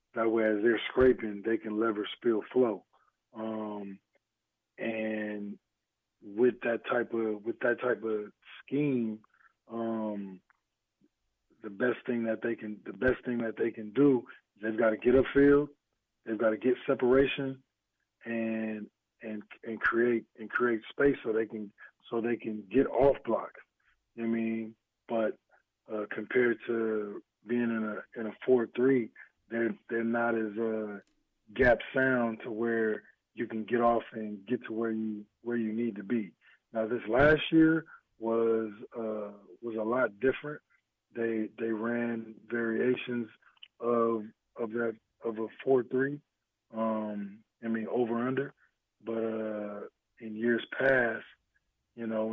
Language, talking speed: English, 155 wpm